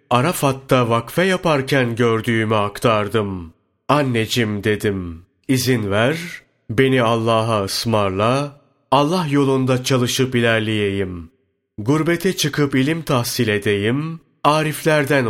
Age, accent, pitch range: 30-49, native, 105-140 Hz